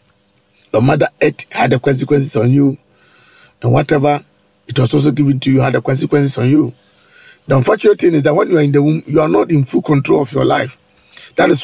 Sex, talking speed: male, 215 wpm